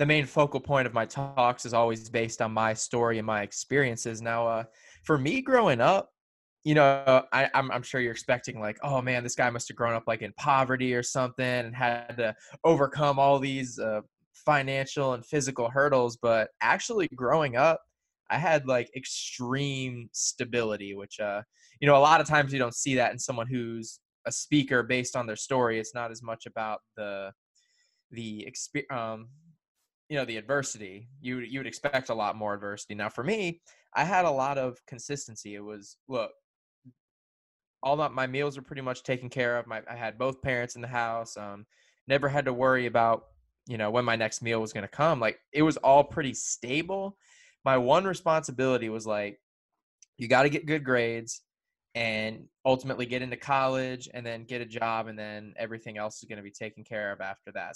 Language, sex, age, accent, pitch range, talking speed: English, male, 20-39, American, 110-135 Hz, 195 wpm